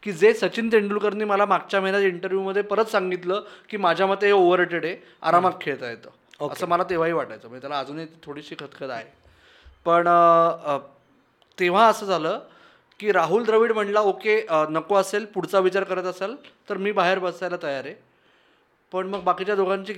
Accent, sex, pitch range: native, male, 180-225 Hz